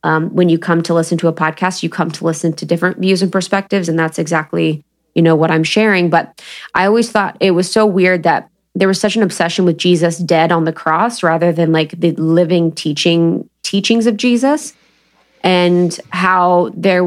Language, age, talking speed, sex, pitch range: English, 20-39, 205 wpm, female, 170-210 Hz